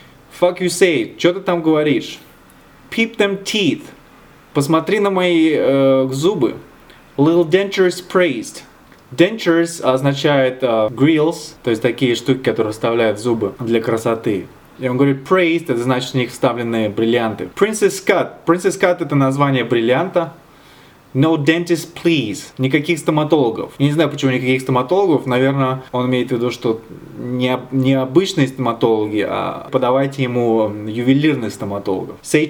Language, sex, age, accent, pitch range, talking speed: Russian, male, 20-39, native, 130-175 Hz, 140 wpm